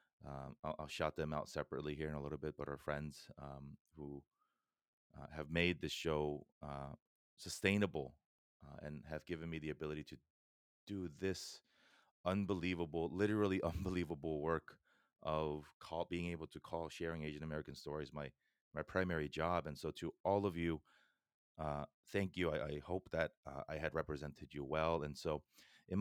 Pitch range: 75-85 Hz